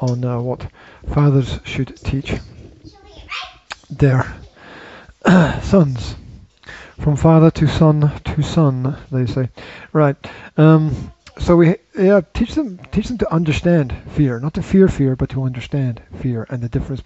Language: English